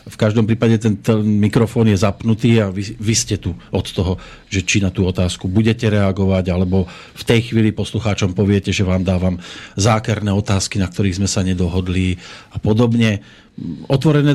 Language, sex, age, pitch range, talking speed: Slovak, male, 40-59, 95-115 Hz, 170 wpm